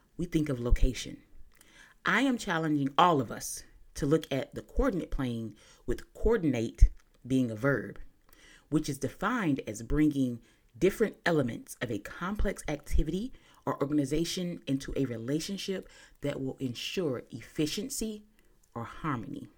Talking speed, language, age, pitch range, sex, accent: 130 wpm, English, 30-49, 130-170 Hz, female, American